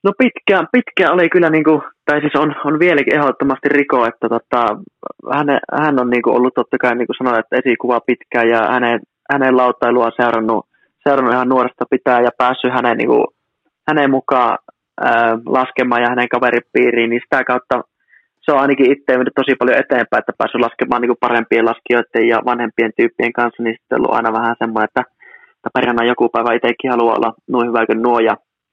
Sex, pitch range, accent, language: male, 120-135 Hz, native, Finnish